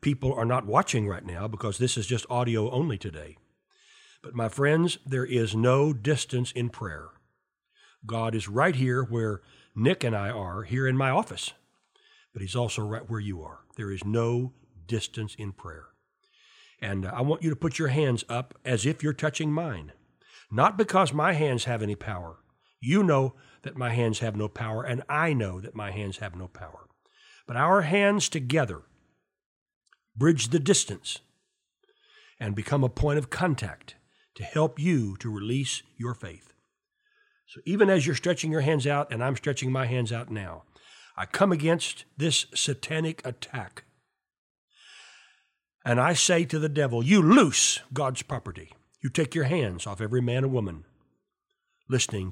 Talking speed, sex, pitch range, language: 170 wpm, male, 110-160 Hz, English